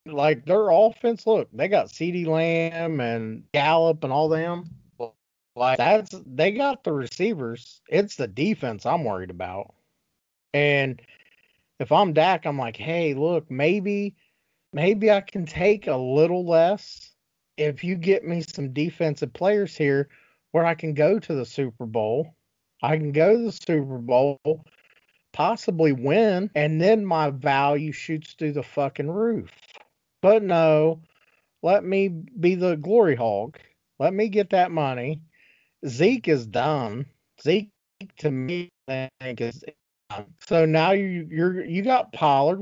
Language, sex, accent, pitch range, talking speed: English, male, American, 145-190 Hz, 150 wpm